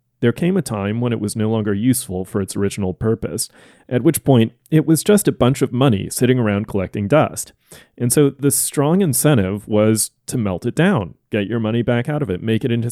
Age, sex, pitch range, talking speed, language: 30-49, male, 100-125 Hz, 225 wpm, English